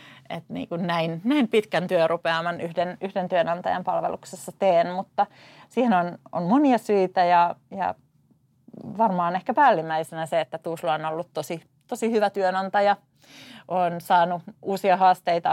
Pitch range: 165-190 Hz